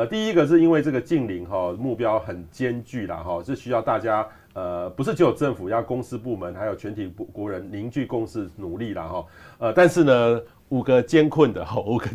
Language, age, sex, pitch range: Chinese, 30-49, male, 105-150 Hz